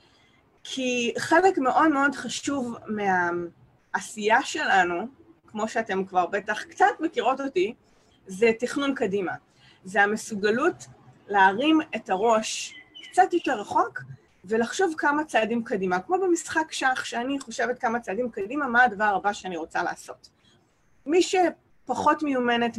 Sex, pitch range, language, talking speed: female, 210-290 Hz, English, 115 wpm